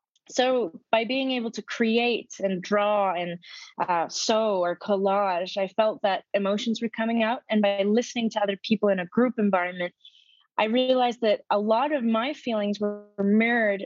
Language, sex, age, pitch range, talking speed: English, female, 20-39, 200-235 Hz, 175 wpm